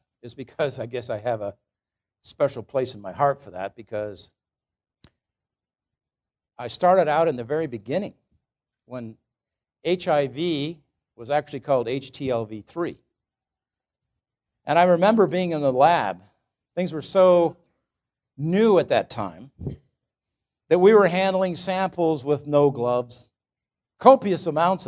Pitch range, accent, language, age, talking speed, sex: 120-175 Hz, American, English, 50-69, 125 wpm, male